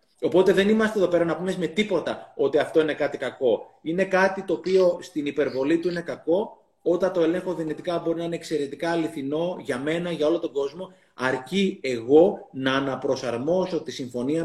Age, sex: 30-49, male